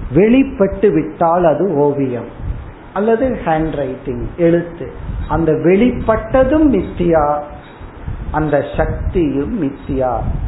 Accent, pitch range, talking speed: native, 140-190 Hz, 65 wpm